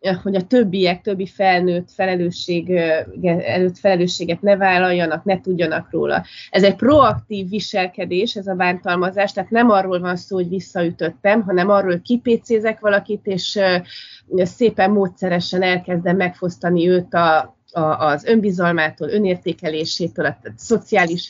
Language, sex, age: Hungarian, female, 30-49